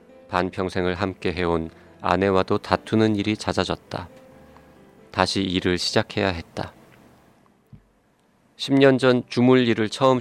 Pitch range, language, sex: 90-110 Hz, Korean, male